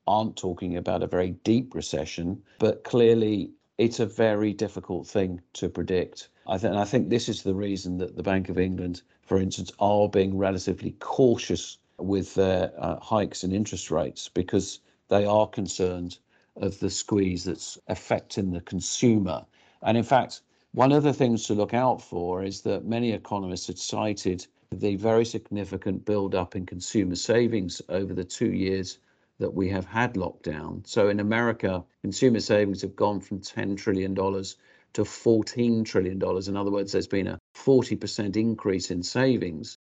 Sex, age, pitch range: male, 50-69, 95-110 Hz